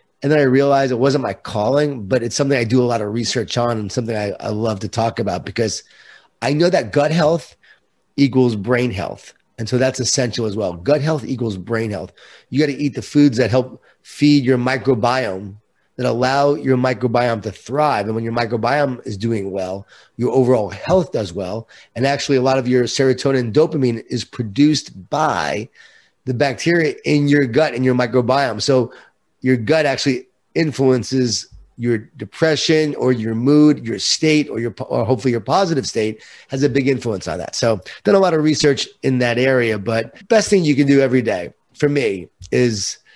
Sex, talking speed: male, 195 wpm